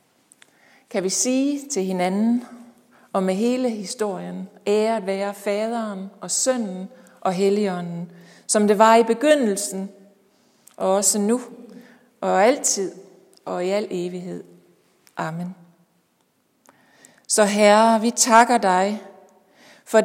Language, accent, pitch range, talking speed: Danish, native, 190-235 Hz, 115 wpm